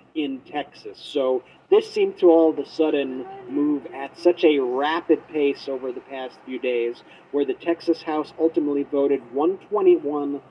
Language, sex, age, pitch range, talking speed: English, male, 40-59, 130-160 Hz, 160 wpm